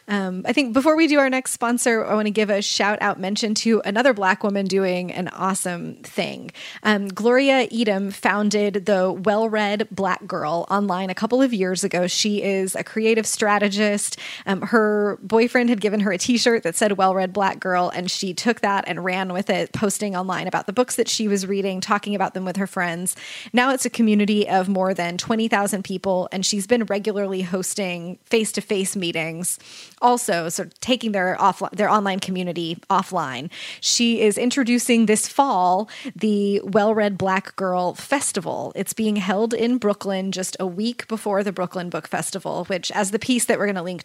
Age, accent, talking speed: 20-39, American, 195 wpm